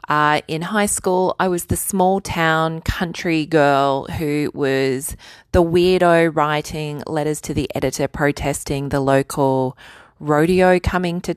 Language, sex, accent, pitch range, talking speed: English, female, Australian, 145-165 Hz, 135 wpm